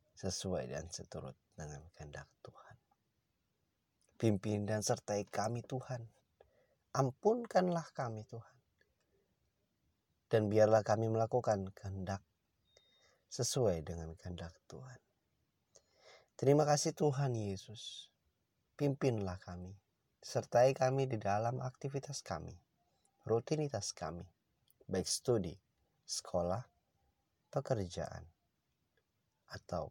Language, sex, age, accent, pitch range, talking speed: Indonesian, male, 30-49, native, 90-115 Hz, 85 wpm